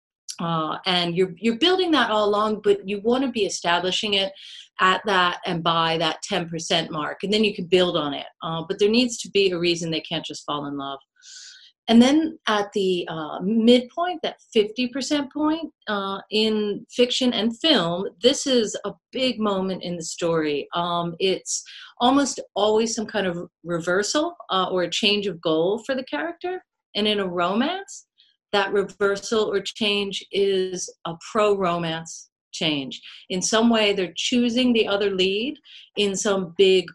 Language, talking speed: English, 170 wpm